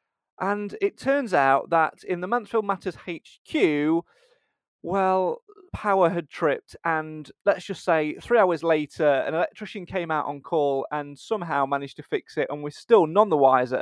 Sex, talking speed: male, 170 wpm